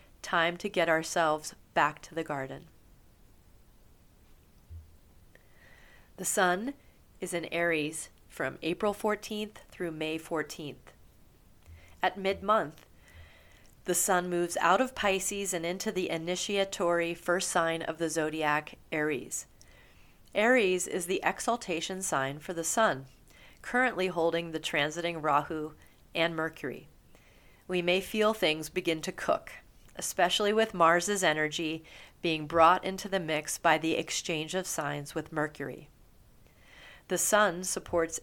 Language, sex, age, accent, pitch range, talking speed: English, female, 30-49, American, 155-185 Hz, 120 wpm